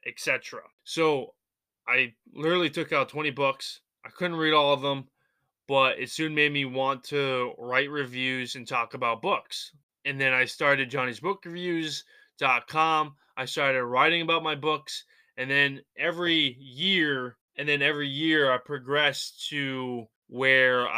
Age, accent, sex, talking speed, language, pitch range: 20-39, American, male, 150 wpm, English, 125-150 Hz